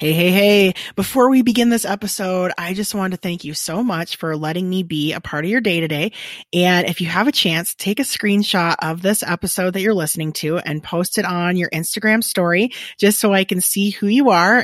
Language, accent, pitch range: English, American, 175-230 Hz